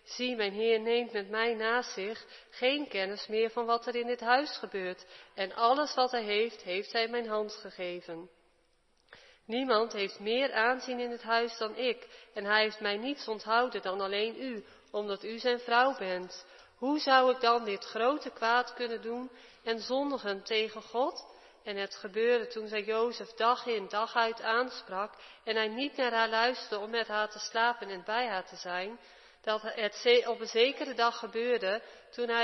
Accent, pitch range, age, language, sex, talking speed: Dutch, 210-240 Hz, 40-59, Dutch, female, 185 wpm